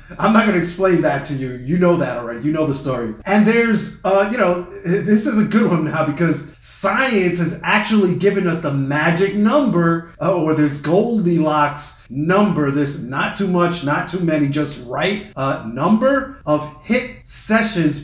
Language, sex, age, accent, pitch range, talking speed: English, male, 30-49, American, 150-200 Hz, 190 wpm